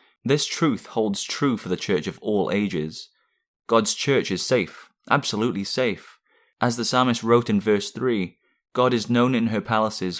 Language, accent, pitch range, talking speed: English, British, 95-120 Hz, 170 wpm